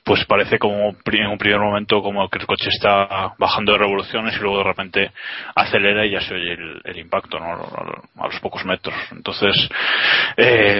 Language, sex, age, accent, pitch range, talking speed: Spanish, male, 20-39, Spanish, 100-115 Hz, 190 wpm